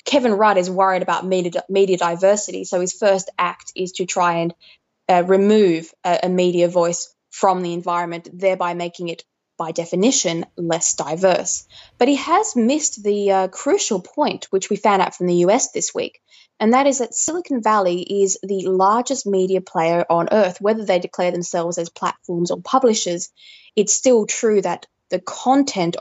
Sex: female